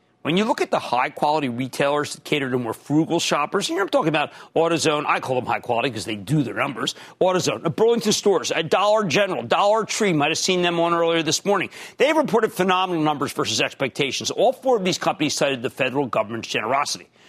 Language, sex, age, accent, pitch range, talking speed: English, male, 40-59, American, 130-185 Hz, 210 wpm